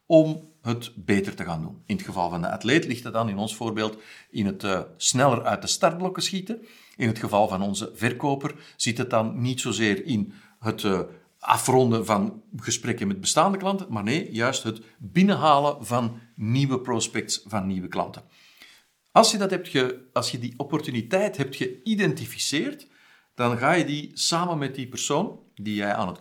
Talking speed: 170 wpm